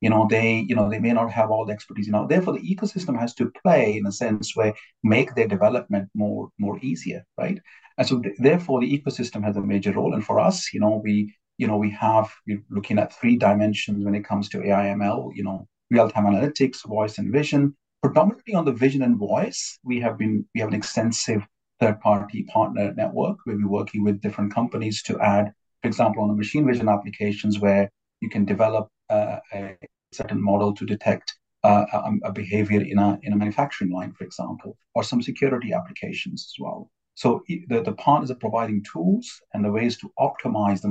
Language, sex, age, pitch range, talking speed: English, male, 40-59, 100-115 Hz, 205 wpm